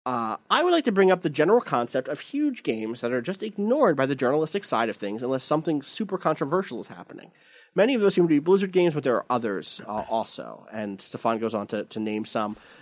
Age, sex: 30-49, male